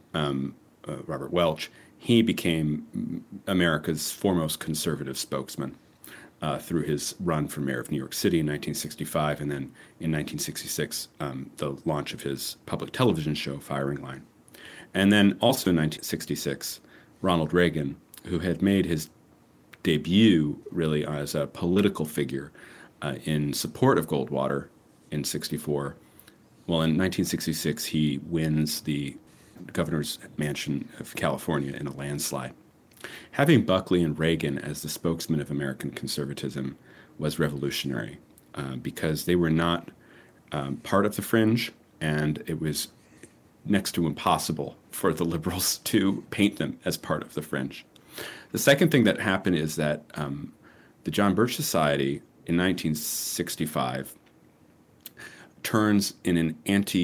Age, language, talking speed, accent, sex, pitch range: 40-59, English, 135 wpm, American, male, 70-90 Hz